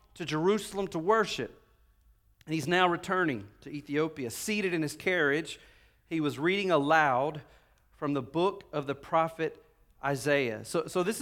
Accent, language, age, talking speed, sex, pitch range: American, English, 40-59, 150 wpm, male, 155-195 Hz